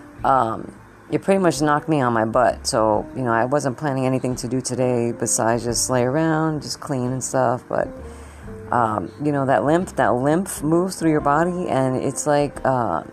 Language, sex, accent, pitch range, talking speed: English, female, American, 120-160 Hz, 195 wpm